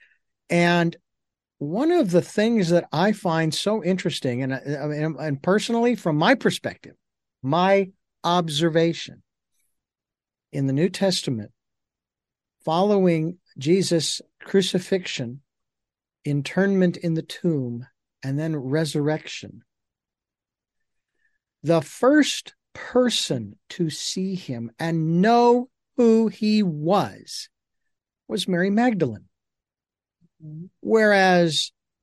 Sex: male